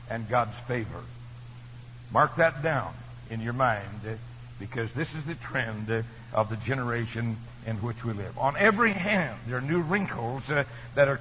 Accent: American